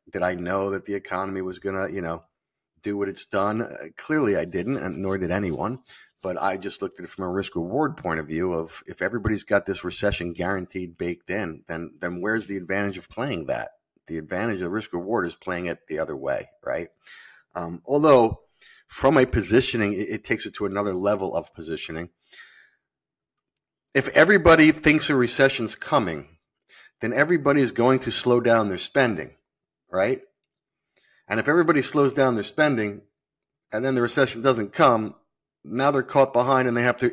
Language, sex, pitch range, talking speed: English, male, 90-130 Hz, 185 wpm